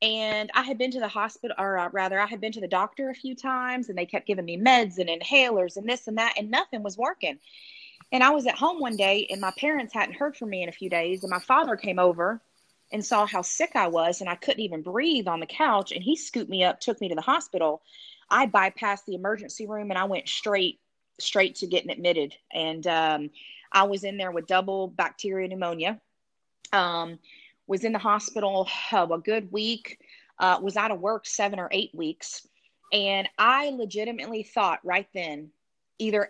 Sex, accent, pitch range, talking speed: female, American, 180-230 Hz, 215 wpm